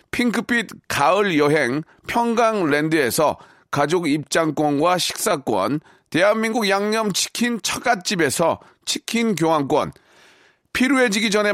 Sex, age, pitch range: male, 40-59, 165-215 Hz